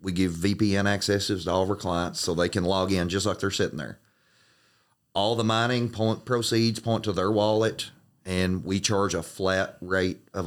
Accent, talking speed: American, 200 wpm